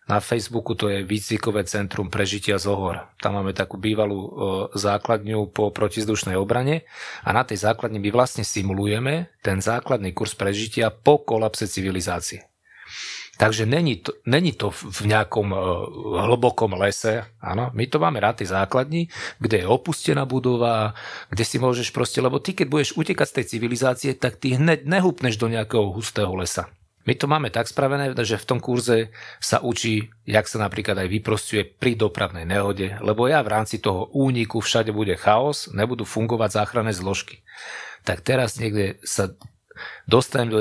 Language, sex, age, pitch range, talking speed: Slovak, male, 40-59, 100-120 Hz, 160 wpm